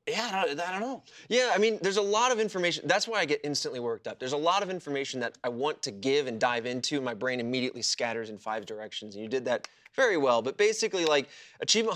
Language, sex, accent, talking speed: English, male, American, 255 wpm